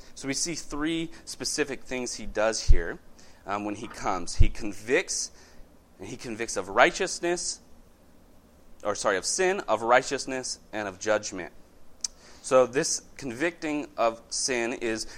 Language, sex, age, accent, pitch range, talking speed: English, male, 30-49, American, 95-125 Hz, 135 wpm